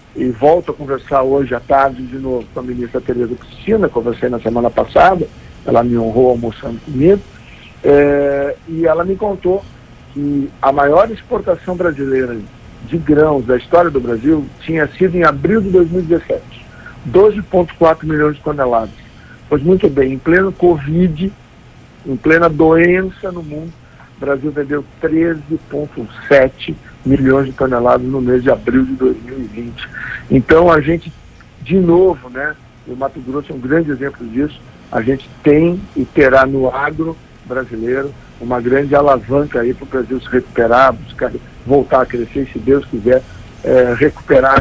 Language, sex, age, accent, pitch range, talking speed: Portuguese, male, 60-79, Brazilian, 125-160 Hz, 150 wpm